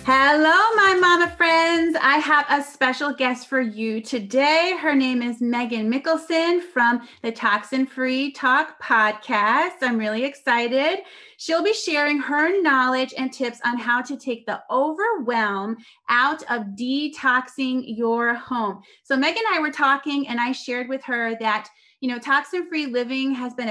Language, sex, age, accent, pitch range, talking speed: English, female, 30-49, American, 235-295 Hz, 155 wpm